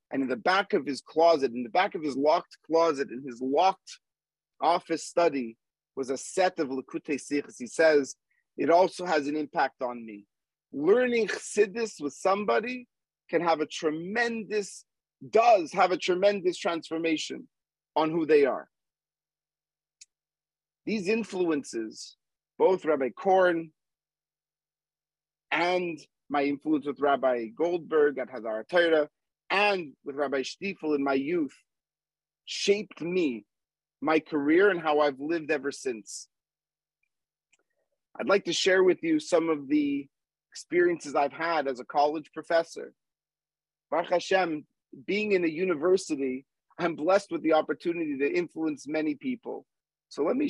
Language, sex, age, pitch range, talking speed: English, male, 40-59, 145-190 Hz, 135 wpm